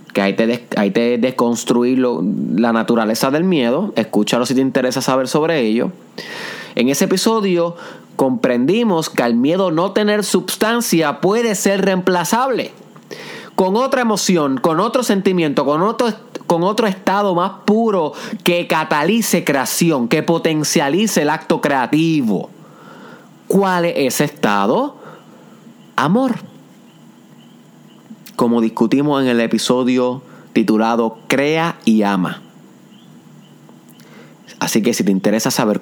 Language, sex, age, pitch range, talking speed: Spanish, male, 30-49, 120-190 Hz, 120 wpm